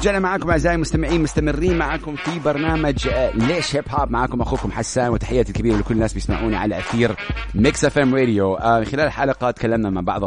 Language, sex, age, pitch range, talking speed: English, male, 30-49, 95-120 Hz, 170 wpm